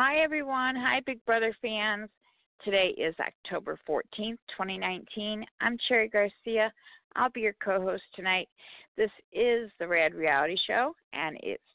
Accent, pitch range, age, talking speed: American, 160-220 Hz, 50-69, 140 wpm